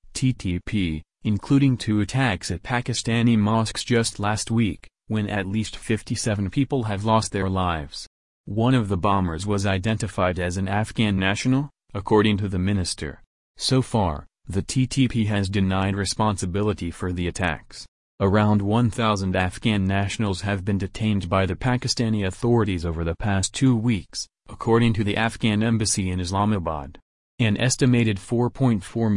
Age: 30-49